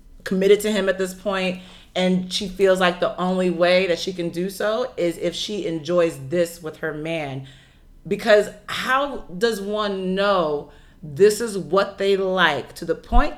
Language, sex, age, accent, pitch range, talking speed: English, female, 30-49, American, 165-210 Hz, 175 wpm